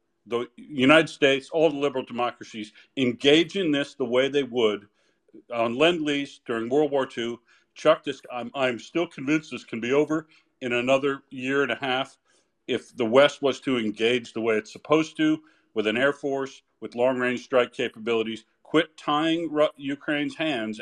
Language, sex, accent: English, male, American